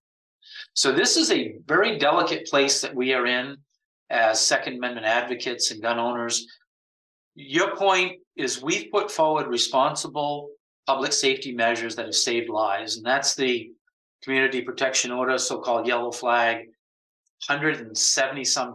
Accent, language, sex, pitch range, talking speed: American, English, male, 120-145 Hz, 135 wpm